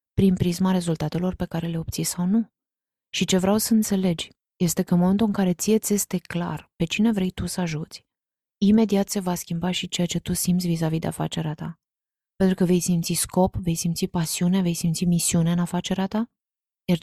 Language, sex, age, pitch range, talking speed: Romanian, female, 20-39, 165-190 Hz, 205 wpm